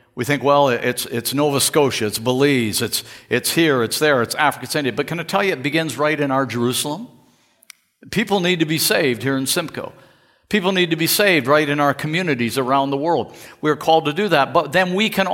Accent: American